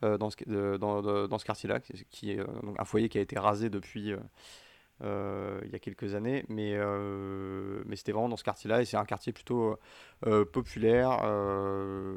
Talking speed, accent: 175 wpm, French